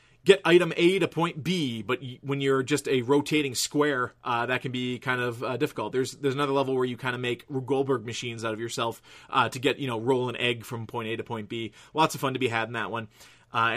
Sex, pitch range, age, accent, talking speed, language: male, 120-145 Hz, 30-49, American, 255 wpm, English